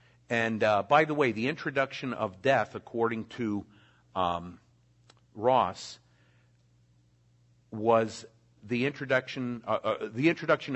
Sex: male